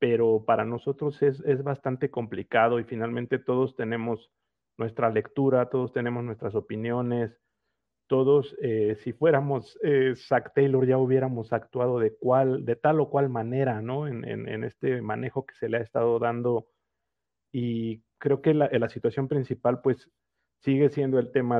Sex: male